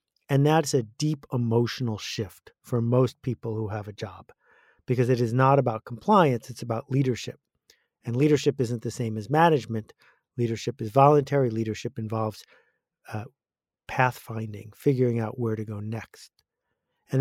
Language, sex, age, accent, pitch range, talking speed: English, male, 50-69, American, 115-145 Hz, 150 wpm